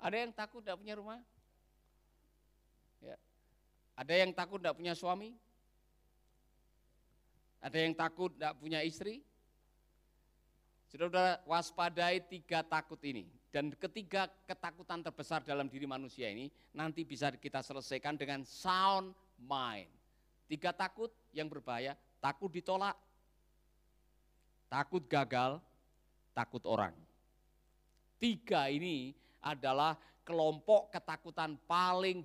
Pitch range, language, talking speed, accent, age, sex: 135-175 Hz, Indonesian, 100 wpm, native, 50-69, male